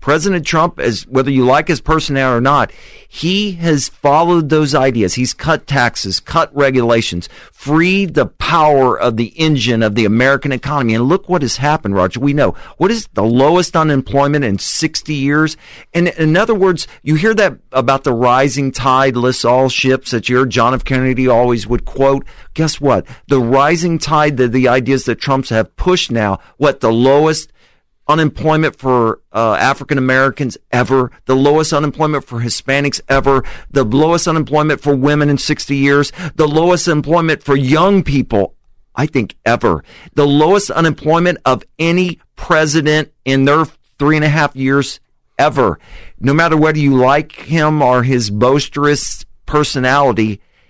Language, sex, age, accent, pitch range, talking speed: English, male, 50-69, American, 130-155 Hz, 160 wpm